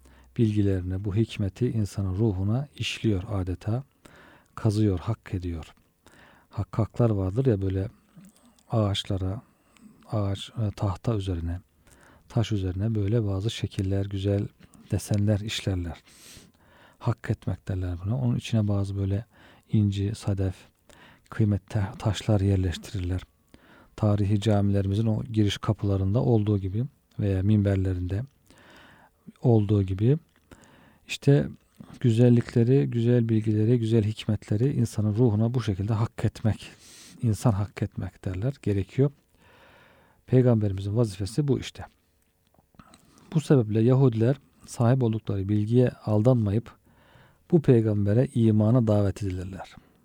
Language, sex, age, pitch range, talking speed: Turkish, male, 40-59, 100-120 Hz, 100 wpm